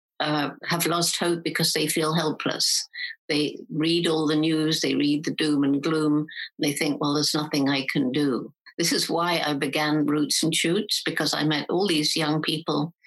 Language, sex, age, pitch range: English, female, 60-79, 145-170 Hz